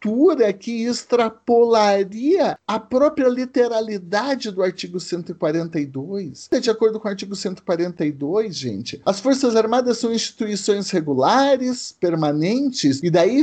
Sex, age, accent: male, 50-69, Brazilian